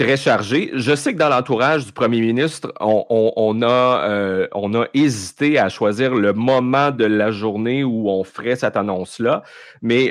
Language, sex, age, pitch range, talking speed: French, male, 30-49, 100-125 Hz, 185 wpm